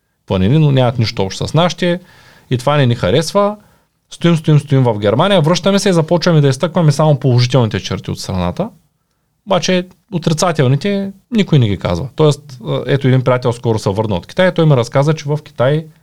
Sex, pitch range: male, 120-155 Hz